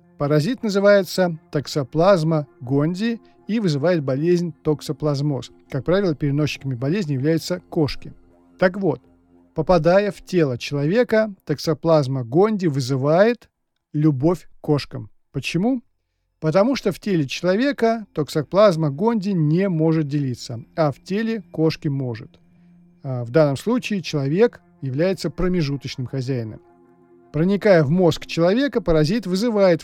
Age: 40-59